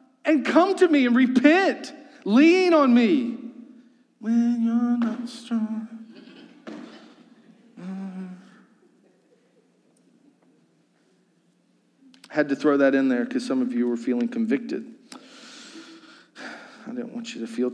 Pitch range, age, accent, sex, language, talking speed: 180-265 Hz, 40-59, American, male, English, 110 wpm